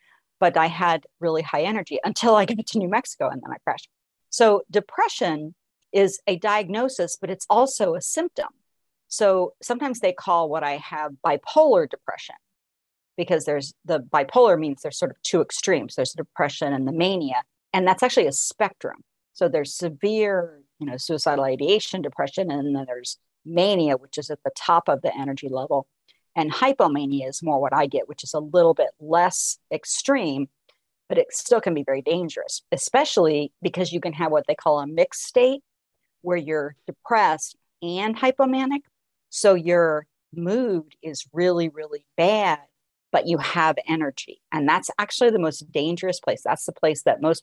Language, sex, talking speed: English, female, 175 wpm